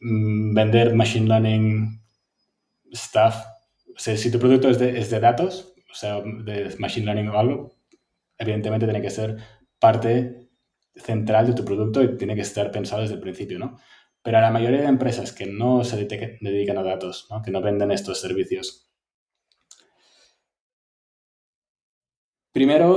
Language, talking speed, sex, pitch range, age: Spanish, 150 wpm, male, 105-125 Hz, 20-39